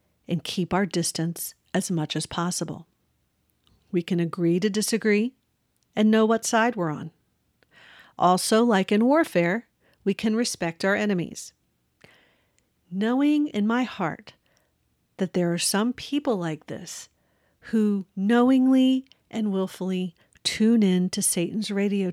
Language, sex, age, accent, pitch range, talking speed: English, female, 50-69, American, 170-220 Hz, 130 wpm